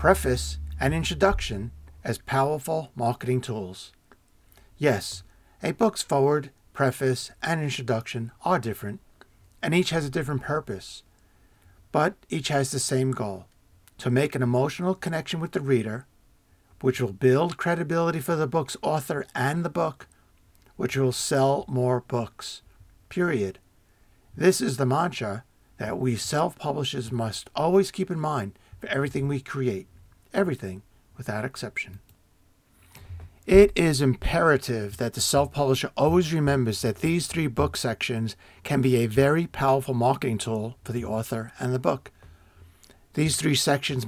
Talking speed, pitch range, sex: 135 wpm, 100-145 Hz, male